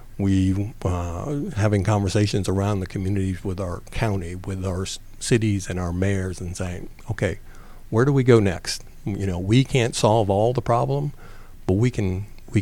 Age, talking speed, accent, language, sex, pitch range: 50-69, 170 wpm, American, English, male, 95-115 Hz